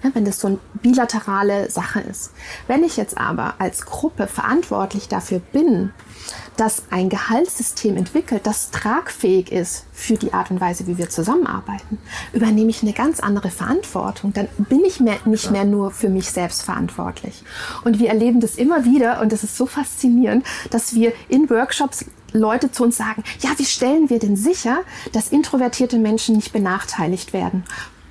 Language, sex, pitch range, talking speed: German, female, 200-240 Hz, 165 wpm